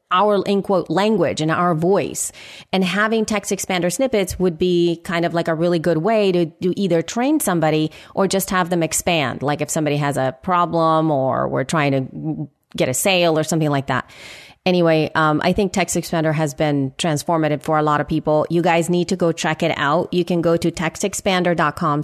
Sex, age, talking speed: female, 30-49, 205 wpm